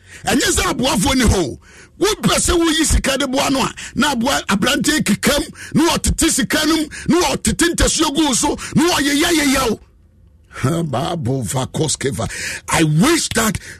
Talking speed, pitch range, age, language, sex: 145 wpm, 160-265 Hz, 50-69, English, male